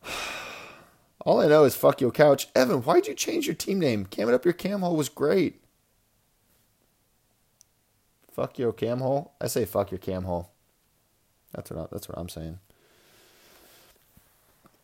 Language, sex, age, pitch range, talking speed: English, male, 30-49, 100-150 Hz, 150 wpm